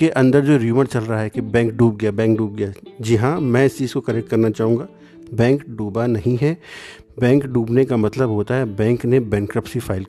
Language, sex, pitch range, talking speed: Hindi, male, 115-140 Hz, 220 wpm